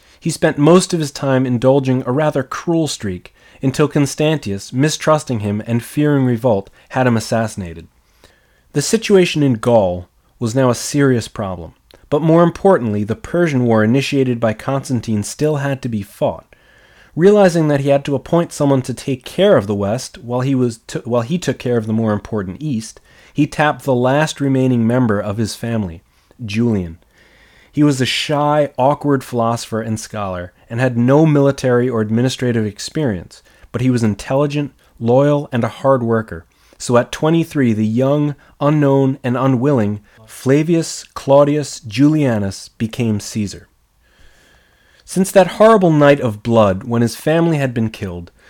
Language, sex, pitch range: English, male, 110-145 Hz